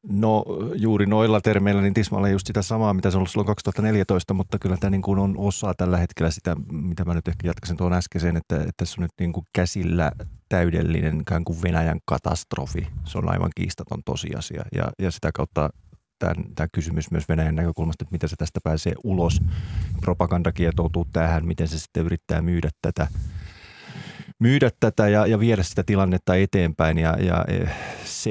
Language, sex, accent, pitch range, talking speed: Finnish, male, native, 80-95 Hz, 165 wpm